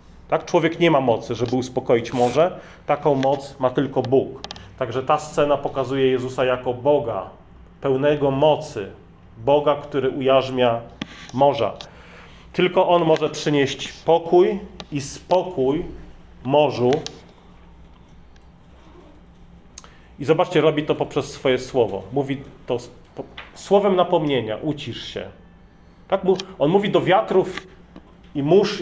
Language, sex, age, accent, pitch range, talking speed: Polish, male, 40-59, native, 130-165 Hz, 110 wpm